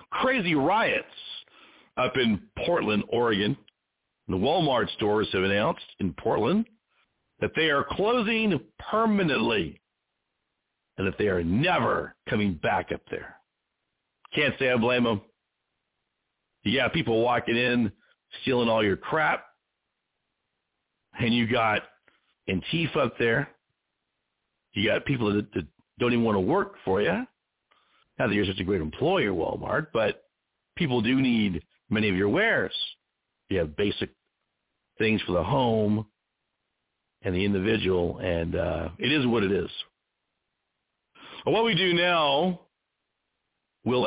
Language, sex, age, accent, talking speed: English, male, 50-69, American, 130 wpm